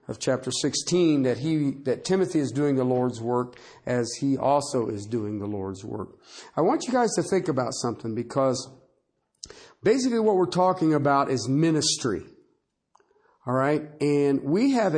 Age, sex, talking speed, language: 50-69, male, 165 wpm, English